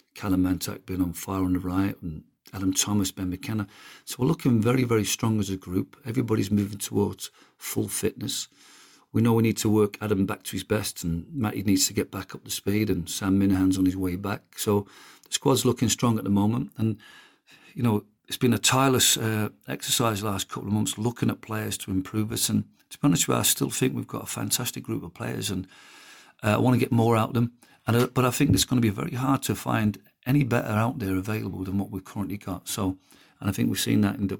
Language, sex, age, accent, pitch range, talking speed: English, male, 50-69, British, 95-115 Hz, 245 wpm